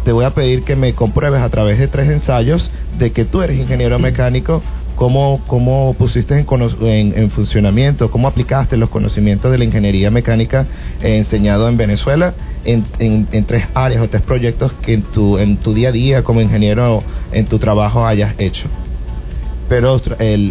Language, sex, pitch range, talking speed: Spanish, male, 105-130 Hz, 170 wpm